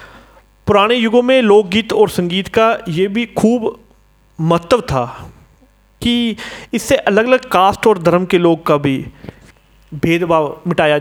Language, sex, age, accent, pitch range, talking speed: Hindi, male, 40-59, native, 170-230 Hz, 135 wpm